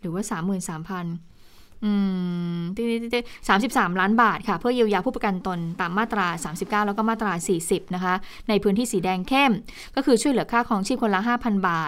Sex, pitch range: female, 185-225 Hz